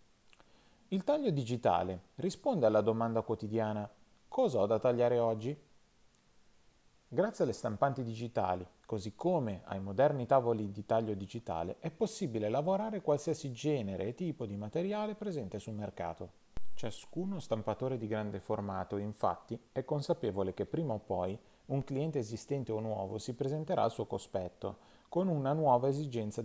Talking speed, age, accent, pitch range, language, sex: 140 wpm, 30-49, native, 105-145 Hz, Italian, male